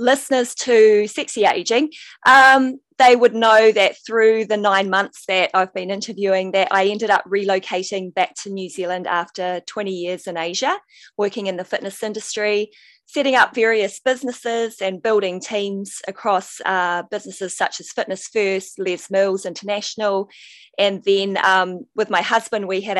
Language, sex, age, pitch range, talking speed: English, female, 20-39, 195-245 Hz, 160 wpm